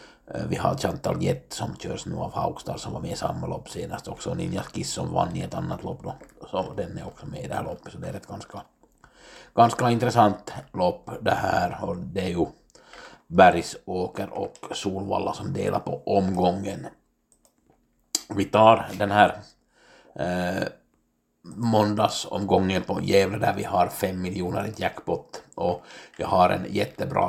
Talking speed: 165 wpm